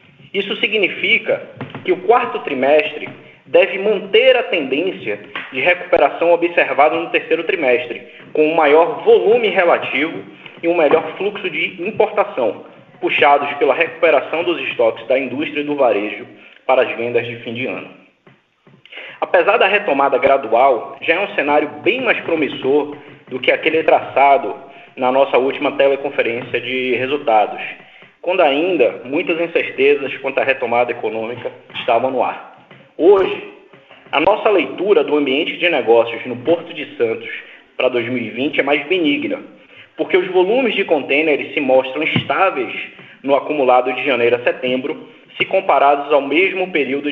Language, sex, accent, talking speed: Portuguese, male, Brazilian, 145 wpm